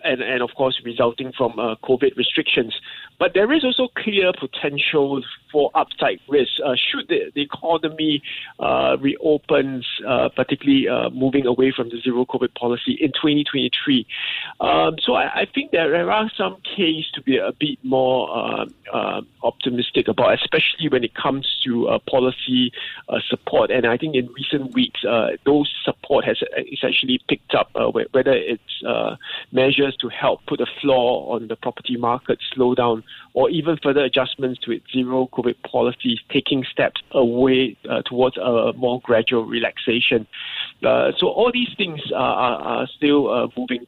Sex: male